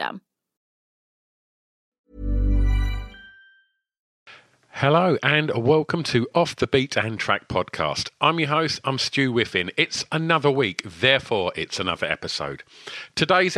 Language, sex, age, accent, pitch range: English, male, 50-69, British, 105-140 Hz